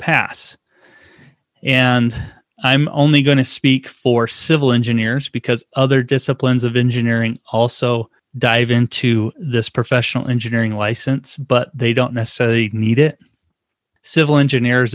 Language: English